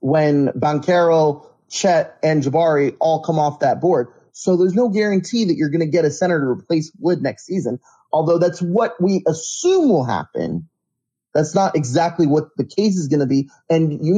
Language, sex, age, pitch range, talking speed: English, male, 30-49, 145-180 Hz, 190 wpm